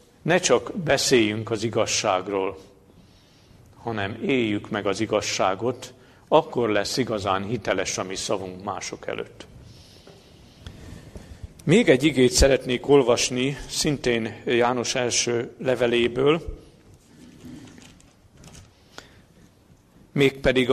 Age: 50-69